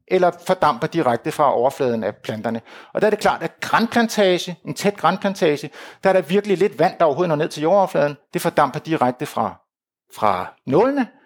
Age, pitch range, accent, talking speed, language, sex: 60-79, 145-200 Hz, native, 185 wpm, Danish, male